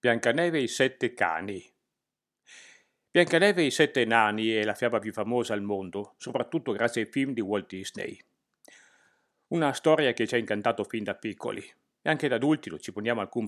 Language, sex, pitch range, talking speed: Italian, male, 105-130 Hz, 185 wpm